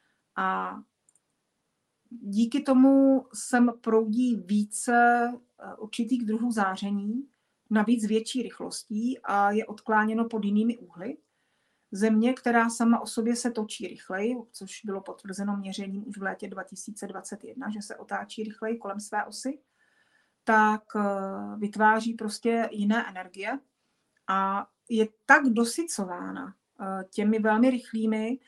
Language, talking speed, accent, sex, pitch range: Czech, 110 wpm, native, female, 210-245 Hz